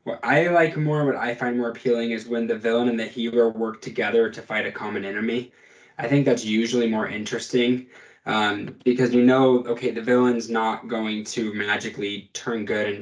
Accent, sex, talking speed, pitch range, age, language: American, male, 200 wpm, 110-130 Hz, 20-39, English